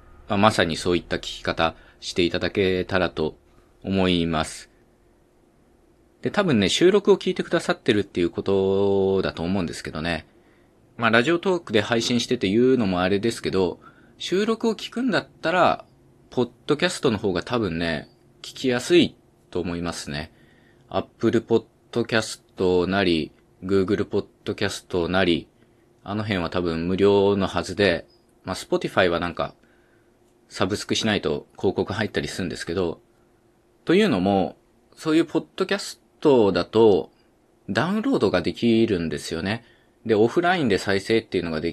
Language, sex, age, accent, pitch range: Japanese, male, 20-39, native, 90-125 Hz